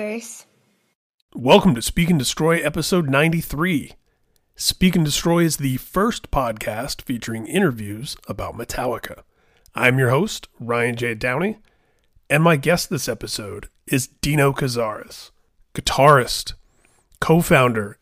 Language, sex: English, male